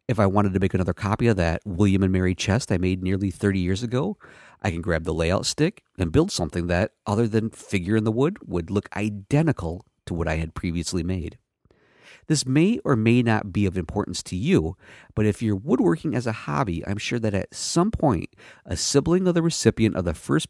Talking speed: 215 wpm